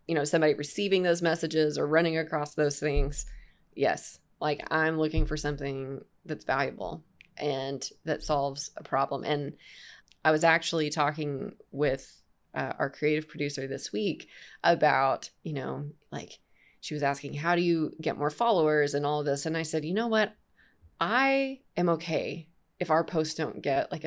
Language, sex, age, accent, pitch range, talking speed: English, female, 20-39, American, 145-170 Hz, 170 wpm